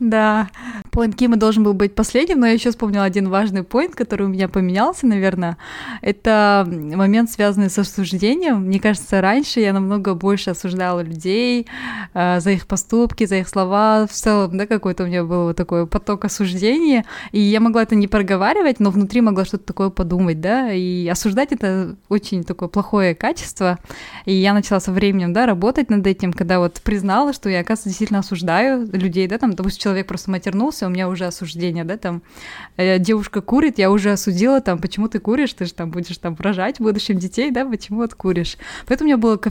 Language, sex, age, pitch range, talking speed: Russian, female, 20-39, 185-225 Hz, 195 wpm